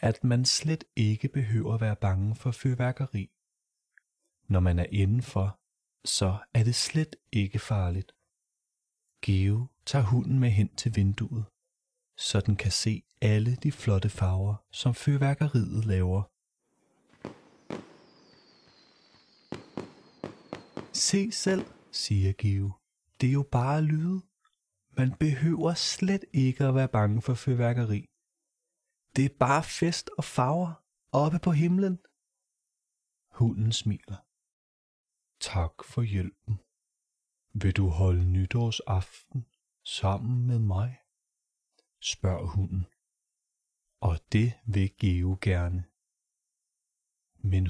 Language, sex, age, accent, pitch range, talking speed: Danish, male, 30-49, native, 100-135 Hz, 105 wpm